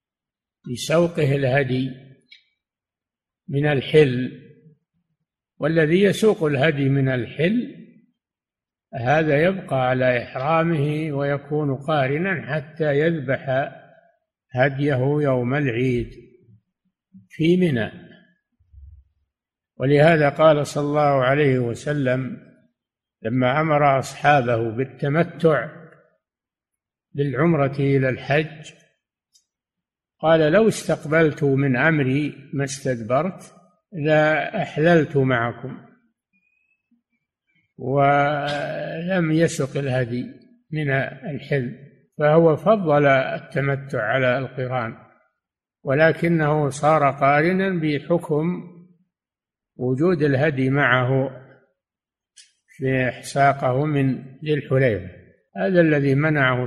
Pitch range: 130-160 Hz